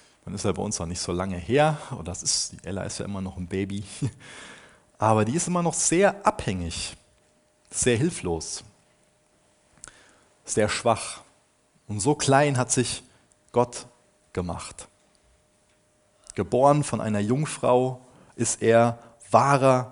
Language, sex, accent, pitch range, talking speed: German, male, German, 95-130 Hz, 140 wpm